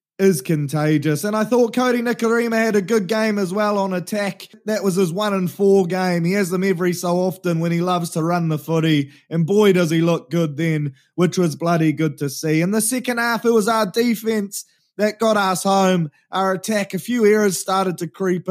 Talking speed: 220 wpm